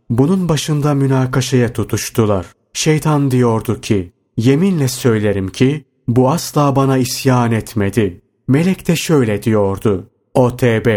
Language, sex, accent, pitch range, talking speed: Turkish, male, native, 105-140 Hz, 115 wpm